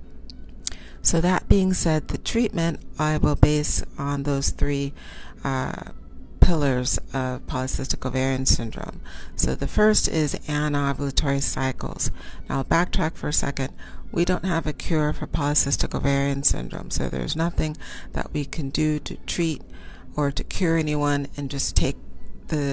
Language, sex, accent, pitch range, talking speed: English, female, American, 125-155 Hz, 145 wpm